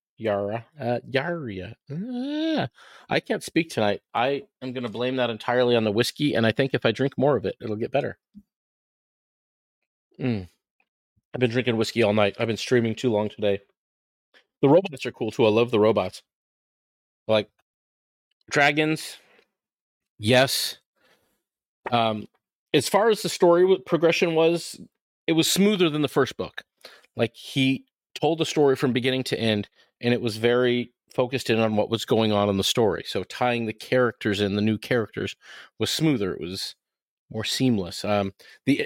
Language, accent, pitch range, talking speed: English, American, 110-145 Hz, 170 wpm